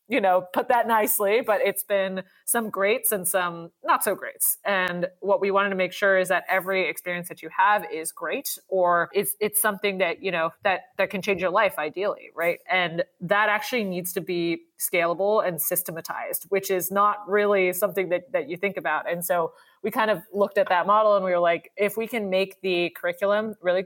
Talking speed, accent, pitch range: 215 wpm, American, 170-200 Hz